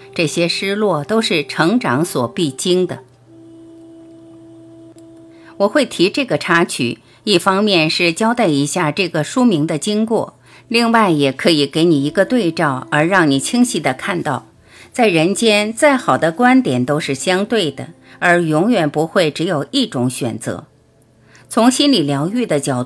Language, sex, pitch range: Chinese, female, 140-215 Hz